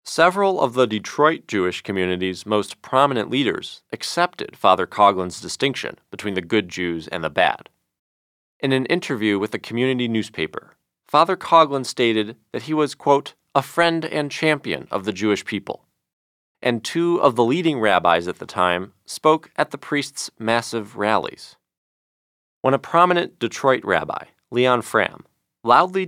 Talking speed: 150 wpm